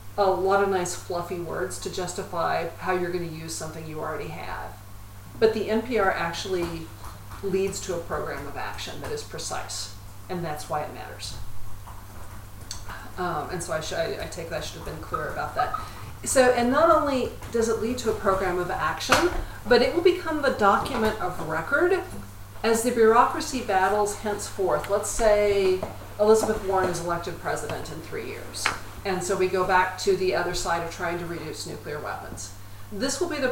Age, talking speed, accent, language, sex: 40-59, 190 wpm, American, French, female